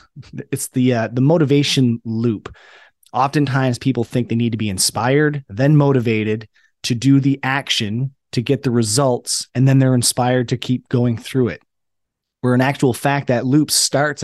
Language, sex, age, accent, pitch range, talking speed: English, male, 30-49, American, 115-140 Hz, 170 wpm